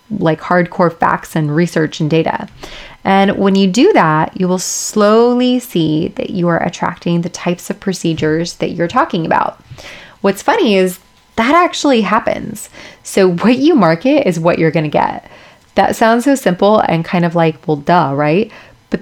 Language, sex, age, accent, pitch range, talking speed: English, female, 20-39, American, 165-200 Hz, 175 wpm